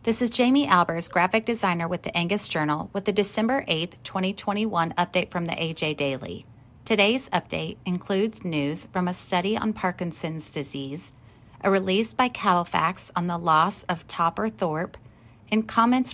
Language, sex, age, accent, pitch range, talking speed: English, female, 30-49, American, 165-215 Hz, 155 wpm